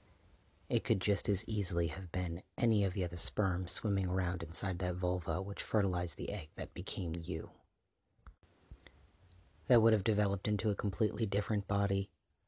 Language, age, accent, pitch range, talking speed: English, 40-59, American, 90-105 Hz, 160 wpm